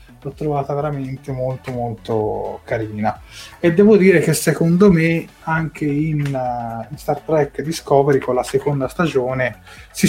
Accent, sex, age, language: native, male, 20-39, Italian